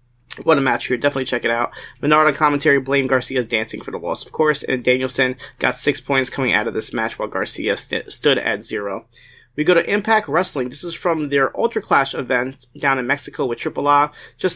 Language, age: English, 30-49